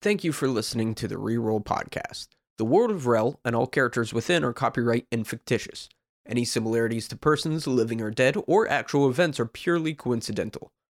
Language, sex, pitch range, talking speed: English, male, 120-150 Hz, 180 wpm